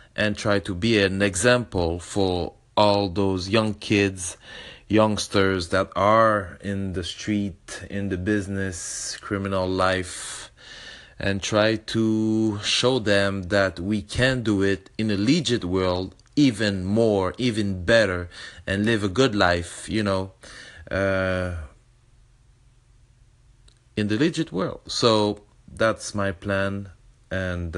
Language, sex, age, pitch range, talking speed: English, male, 30-49, 95-110 Hz, 125 wpm